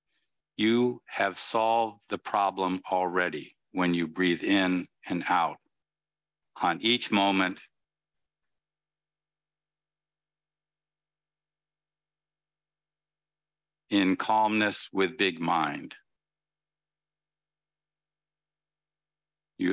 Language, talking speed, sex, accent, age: English, 65 wpm, male, American, 50-69